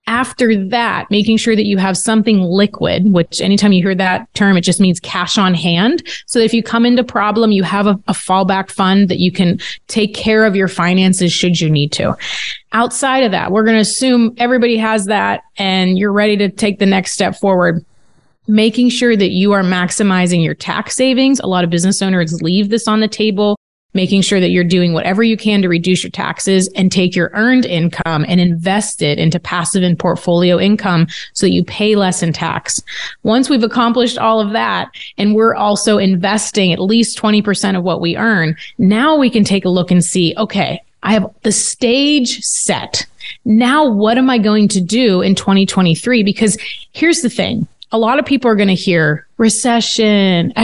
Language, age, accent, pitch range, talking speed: English, 20-39, American, 180-225 Hz, 200 wpm